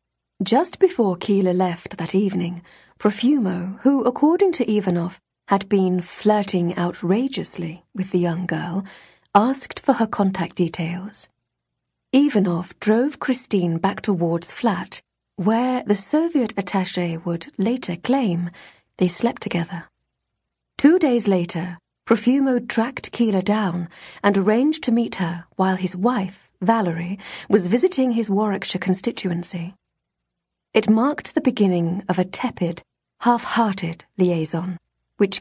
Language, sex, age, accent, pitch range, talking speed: English, female, 40-59, British, 175-235 Hz, 120 wpm